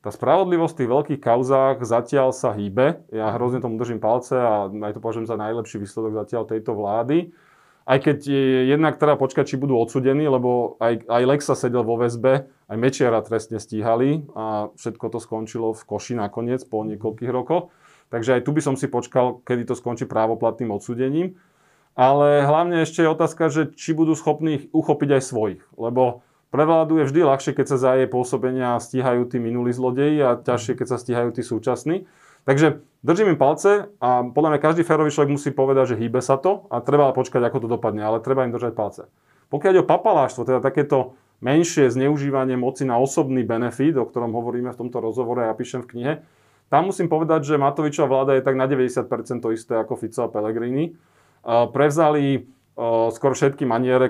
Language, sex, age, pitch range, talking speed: Slovak, male, 20-39, 120-145 Hz, 185 wpm